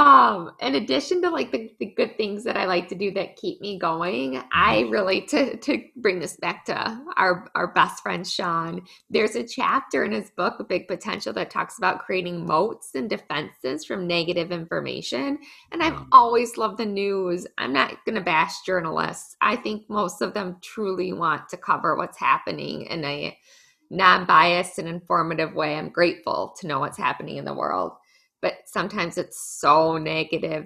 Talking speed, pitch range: 180 wpm, 170-225 Hz